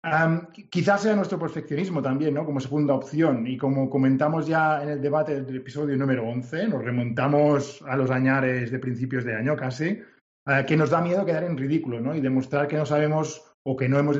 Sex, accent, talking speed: male, Spanish, 205 wpm